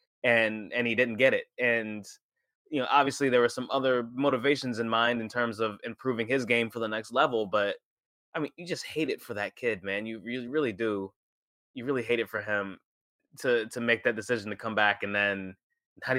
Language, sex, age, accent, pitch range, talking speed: English, male, 20-39, American, 110-135 Hz, 220 wpm